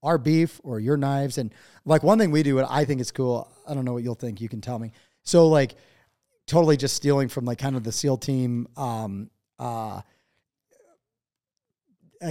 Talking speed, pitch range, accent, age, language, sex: 195 wpm, 120-150 Hz, American, 30-49, English, male